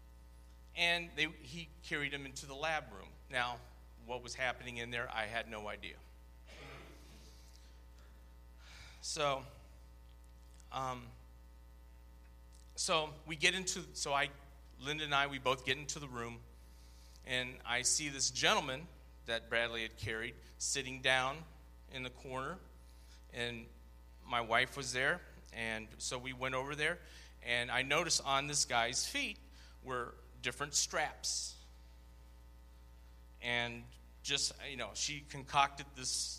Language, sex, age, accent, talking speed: English, male, 40-59, American, 130 wpm